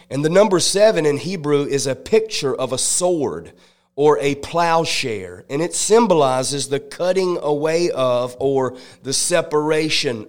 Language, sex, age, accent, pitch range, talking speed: English, male, 30-49, American, 135-160 Hz, 145 wpm